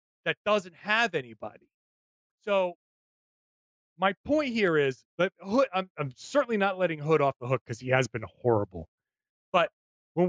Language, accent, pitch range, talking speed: English, American, 140-215 Hz, 155 wpm